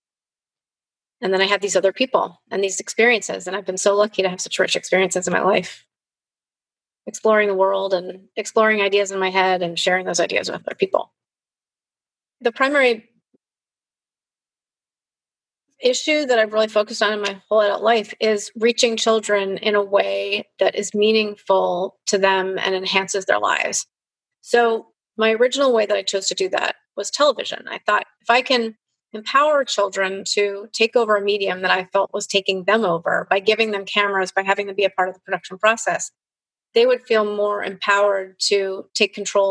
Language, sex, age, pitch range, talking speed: English, female, 30-49, 190-220 Hz, 180 wpm